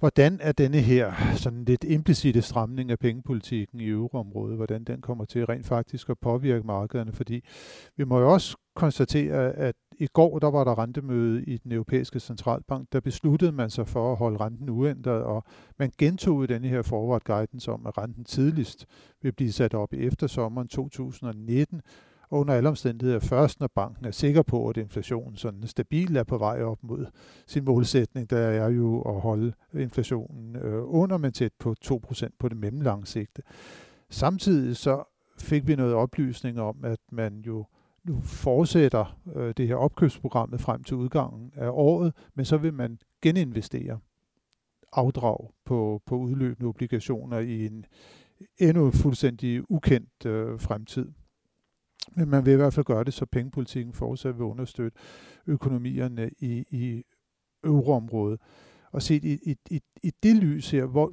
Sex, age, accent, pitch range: male, 50-69, native, 115-145 Hz